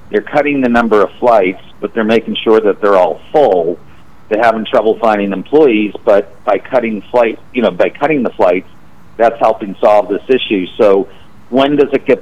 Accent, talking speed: American, 190 wpm